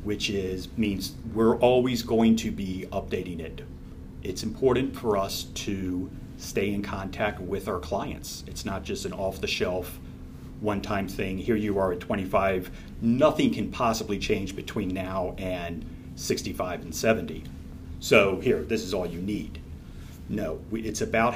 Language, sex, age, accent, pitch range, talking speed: English, male, 40-59, American, 80-100 Hz, 150 wpm